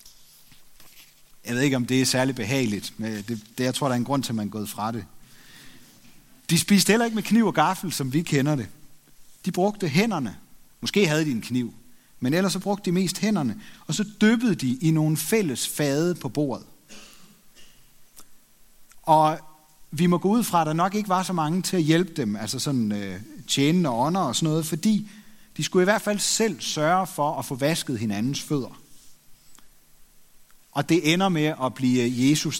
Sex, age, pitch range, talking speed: male, 30-49, 125-185 Hz, 195 wpm